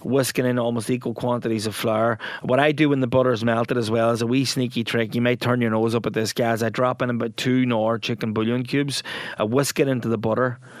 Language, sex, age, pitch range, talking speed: English, male, 20-39, 110-125 Hz, 255 wpm